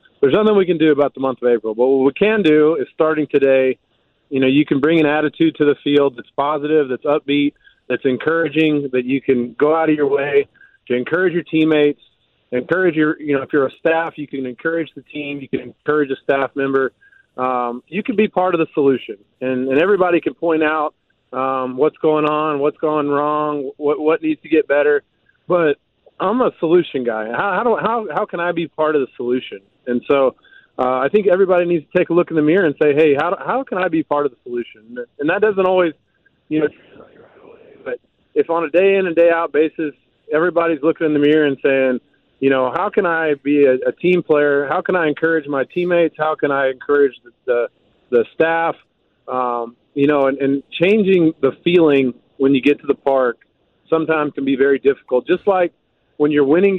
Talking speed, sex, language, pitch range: 215 wpm, male, English, 135-170 Hz